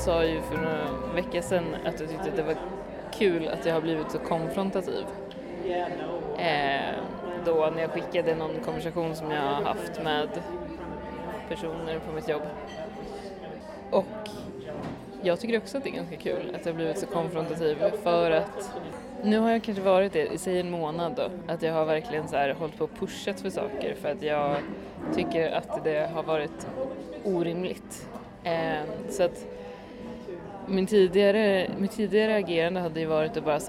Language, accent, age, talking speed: Swedish, native, 20-39, 175 wpm